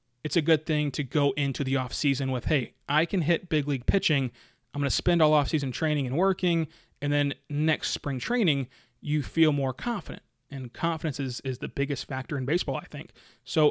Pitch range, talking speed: 135-170 Hz, 205 wpm